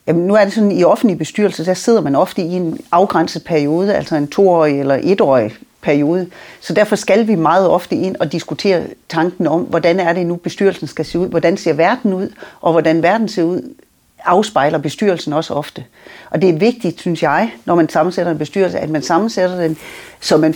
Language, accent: Danish, native